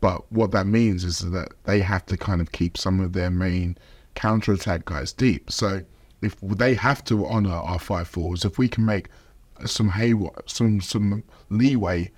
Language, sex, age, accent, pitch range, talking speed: English, male, 20-39, British, 95-115 Hz, 180 wpm